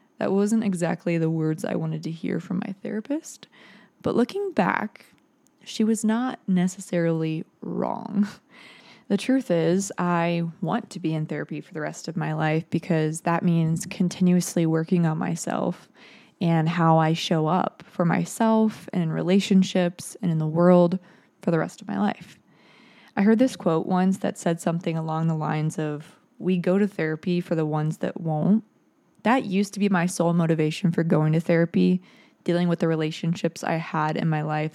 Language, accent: English, American